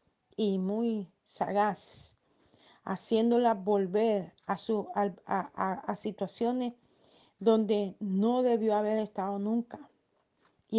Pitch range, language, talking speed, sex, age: 205-235 Hz, Spanish, 85 wpm, female, 40-59